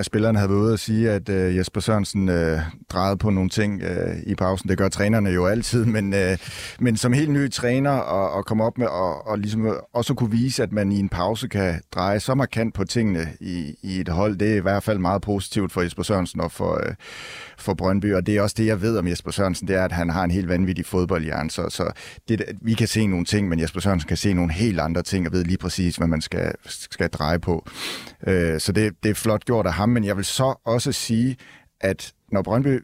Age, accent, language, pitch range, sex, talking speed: 30-49, native, Danish, 95-115 Hz, male, 245 wpm